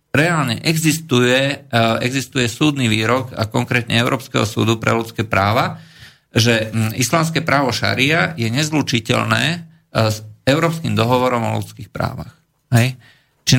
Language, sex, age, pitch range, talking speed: Slovak, male, 50-69, 115-150 Hz, 110 wpm